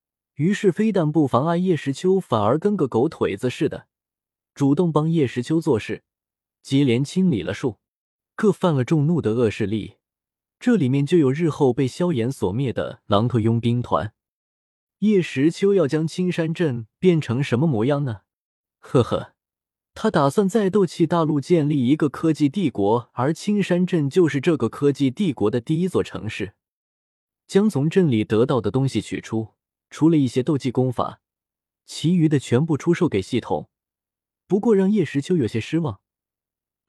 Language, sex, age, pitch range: Chinese, male, 20-39, 110-165 Hz